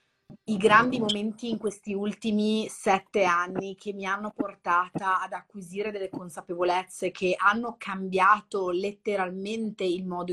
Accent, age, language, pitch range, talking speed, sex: native, 30-49, Italian, 170-195 Hz, 130 wpm, female